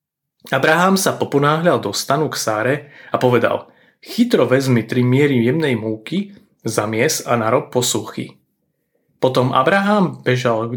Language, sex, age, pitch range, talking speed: Slovak, male, 30-49, 115-150 Hz, 130 wpm